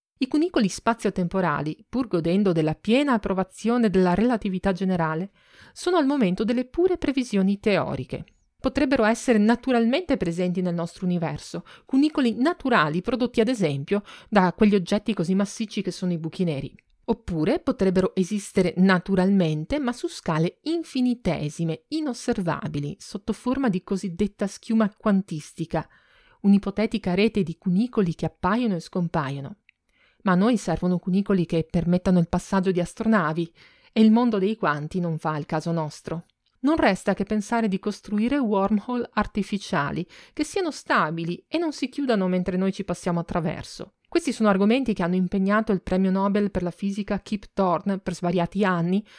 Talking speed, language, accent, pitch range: 150 wpm, Italian, native, 175-230 Hz